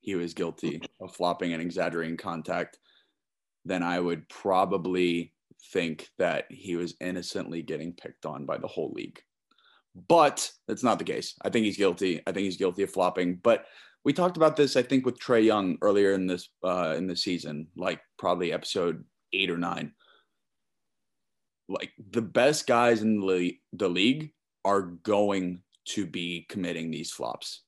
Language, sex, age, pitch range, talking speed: English, male, 20-39, 90-110 Hz, 165 wpm